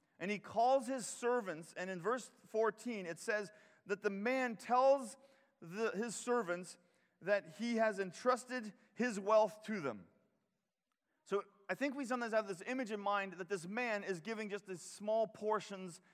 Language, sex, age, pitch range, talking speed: English, male, 30-49, 185-235 Hz, 165 wpm